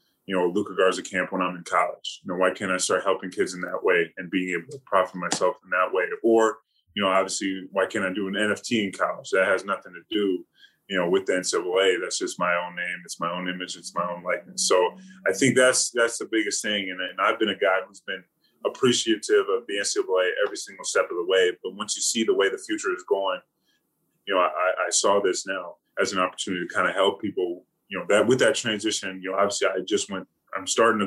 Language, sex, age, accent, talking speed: English, male, 20-39, American, 250 wpm